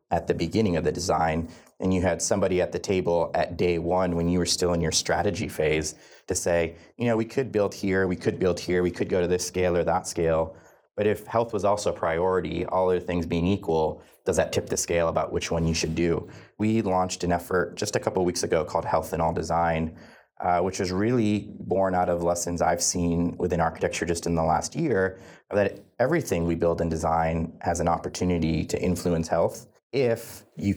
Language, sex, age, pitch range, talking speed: English, male, 30-49, 85-95 Hz, 220 wpm